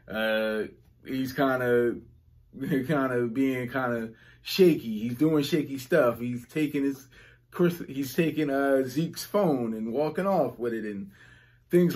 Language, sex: English, male